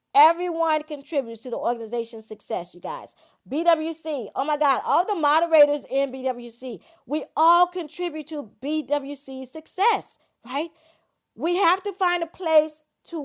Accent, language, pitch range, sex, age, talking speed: American, English, 260-320 Hz, female, 40-59, 140 wpm